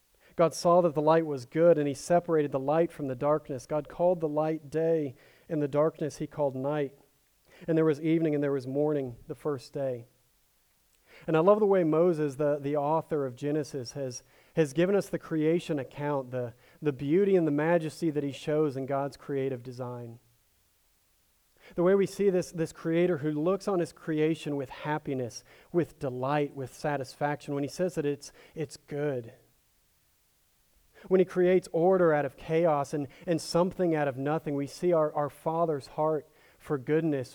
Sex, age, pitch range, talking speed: male, 40-59, 140-165 Hz, 185 wpm